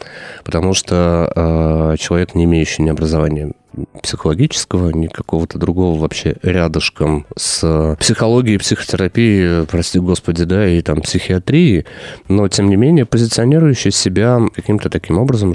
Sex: male